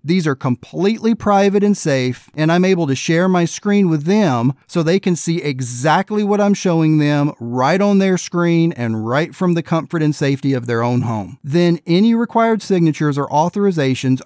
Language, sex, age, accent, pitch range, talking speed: English, male, 40-59, American, 140-185 Hz, 190 wpm